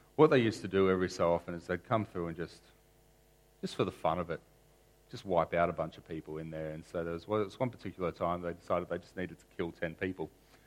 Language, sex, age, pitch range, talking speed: English, male, 40-59, 85-130 Hz, 270 wpm